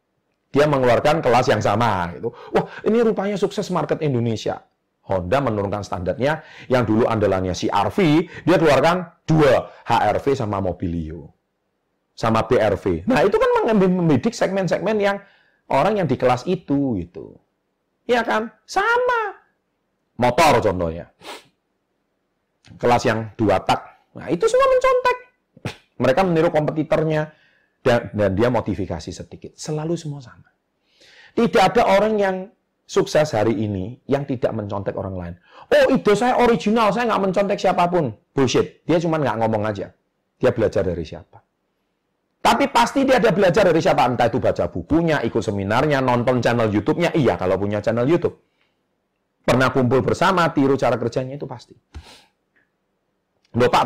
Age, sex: 40-59, male